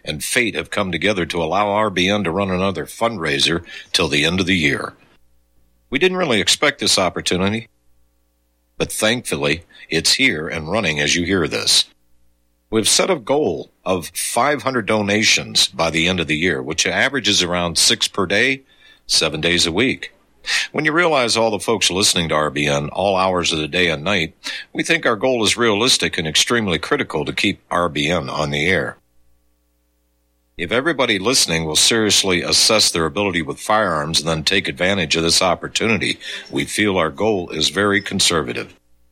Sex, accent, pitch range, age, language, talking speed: male, American, 75-105 Hz, 60-79, English, 170 wpm